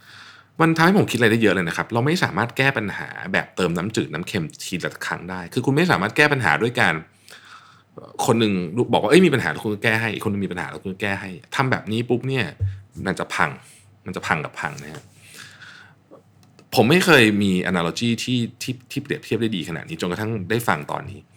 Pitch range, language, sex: 100-125 Hz, Thai, male